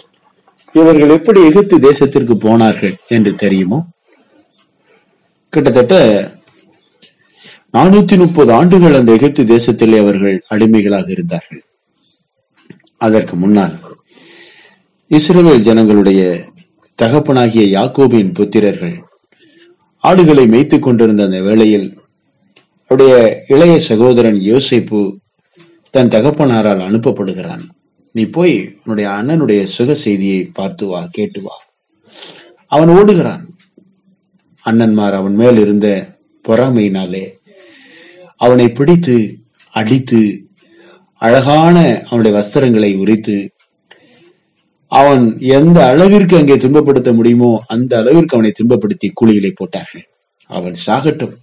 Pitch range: 105-155 Hz